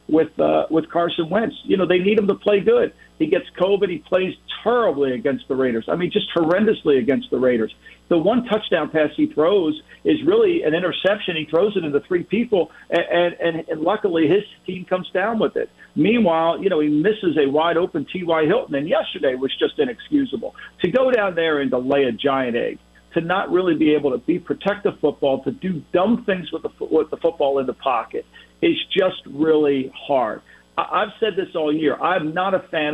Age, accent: 50-69, American